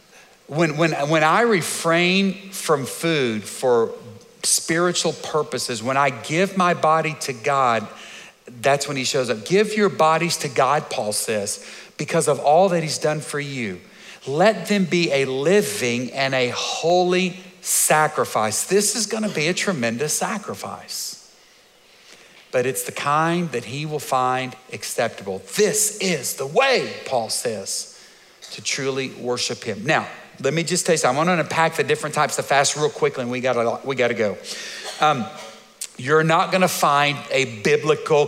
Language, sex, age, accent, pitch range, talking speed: English, male, 50-69, American, 135-175 Hz, 170 wpm